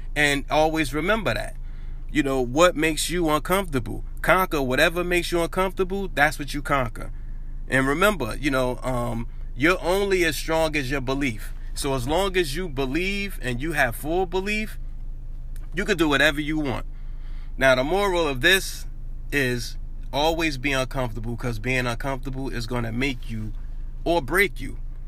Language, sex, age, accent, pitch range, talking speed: English, male, 30-49, American, 125-160 Hz, 165 wpm